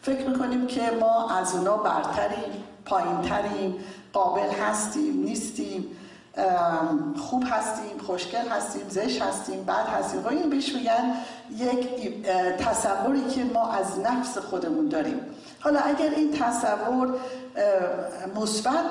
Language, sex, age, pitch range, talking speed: Persian, female, 50-69, 225-280 Hz, 110 wpm